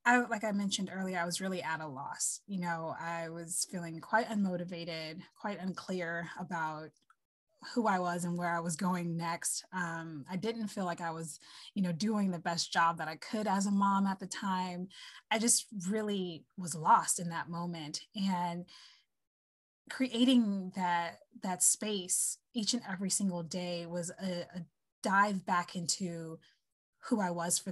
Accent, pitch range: American, 170-205 Hz